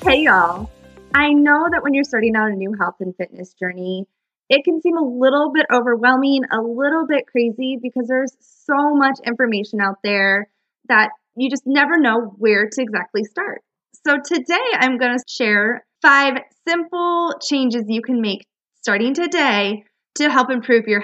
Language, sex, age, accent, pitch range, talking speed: English, female, 20-39, American, 225-290 Hz, 170 wpm